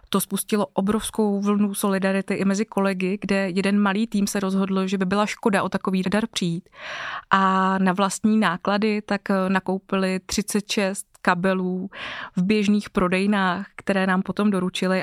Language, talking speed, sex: Czech, 150 wpm, female